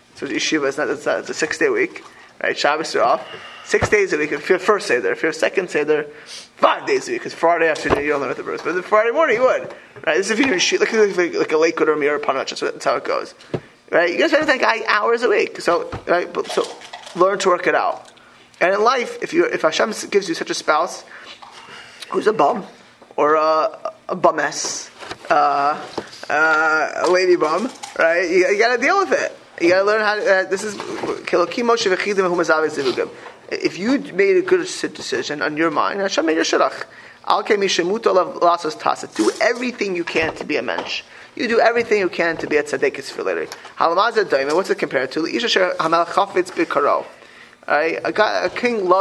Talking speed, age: 195 wpm, 20-39